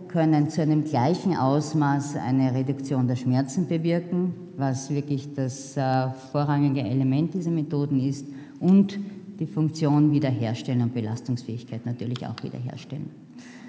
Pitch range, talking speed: 135-165 Hz, 120 wpm